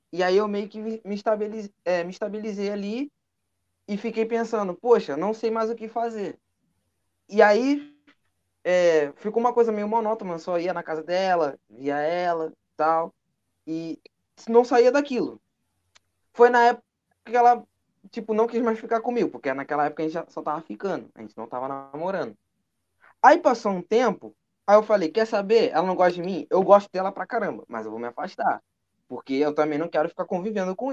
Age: 20-39